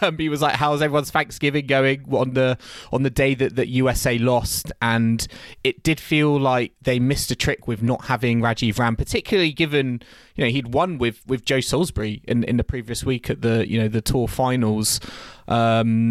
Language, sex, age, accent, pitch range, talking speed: English, male, 20-39, British, 110-135 Hz, 195 wpm